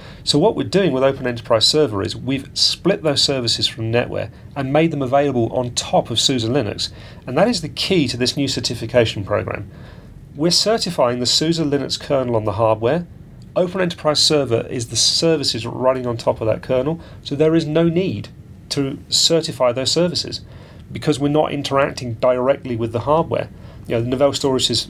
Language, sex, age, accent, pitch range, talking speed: English, male, 40-59, British, 115-140 Hz, 185 wpm